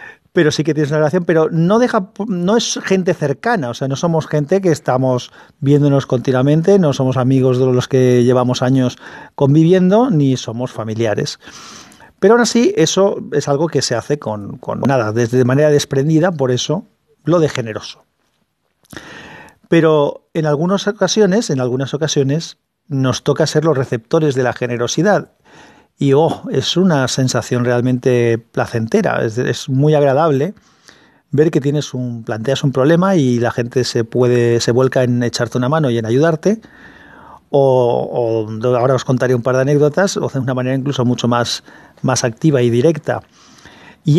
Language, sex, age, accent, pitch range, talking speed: Spanish, male, 40-59, Spanish, 125-165 Hz, 165 wpm